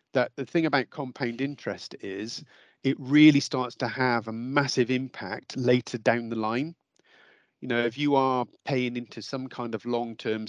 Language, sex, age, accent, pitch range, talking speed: English, male, 40-59, British, 115-135 Hz, 175 wpm